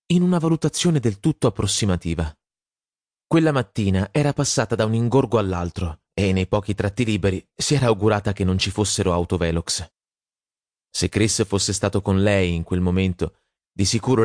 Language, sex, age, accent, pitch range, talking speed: Italian, male, 30-49, native, 90-120 Hz, 160 wpm